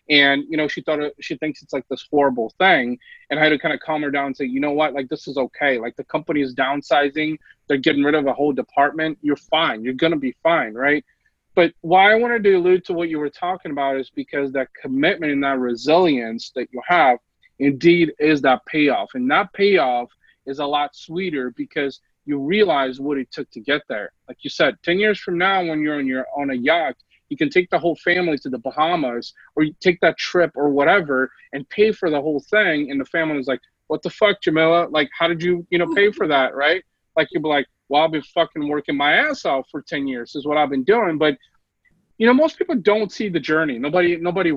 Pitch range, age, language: 140-180 Hz, 30-49, English